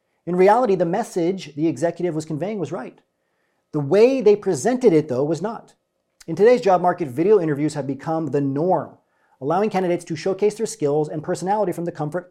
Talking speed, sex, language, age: 190 wpm, male, English, 40-59